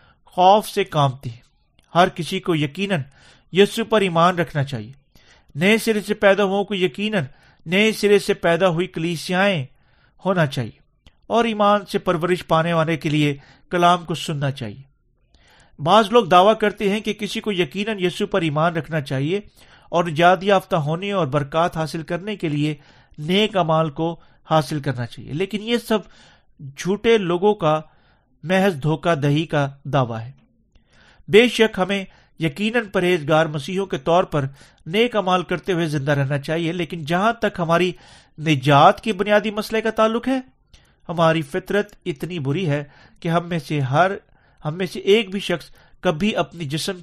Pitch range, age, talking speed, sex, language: 150-195 Hz, 40-59, 160 wpm, male, Urdu